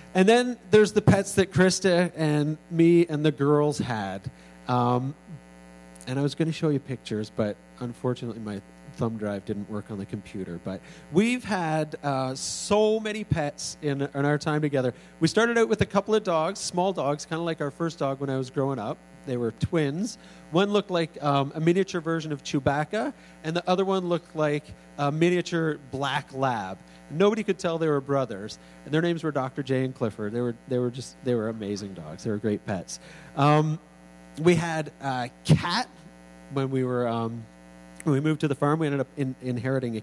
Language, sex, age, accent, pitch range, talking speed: English, male, 40-59, American, 120-165 Hz, 200 wpm